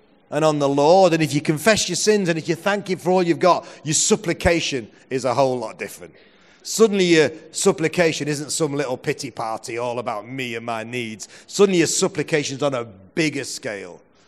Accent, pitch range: British, 120-150 Hz